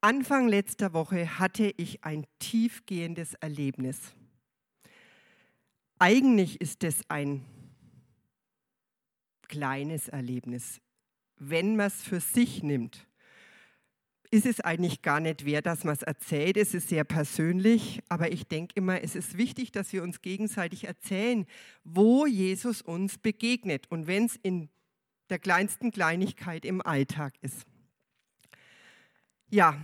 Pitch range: 160-215 Hz